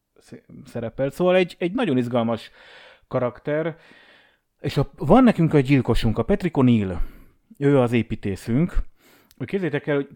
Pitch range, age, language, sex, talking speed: 105-130 Hz, 30-49, Hungarian, male, 135 wpm